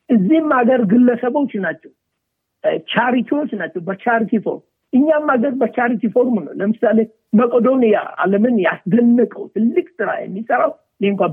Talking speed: 100 wpm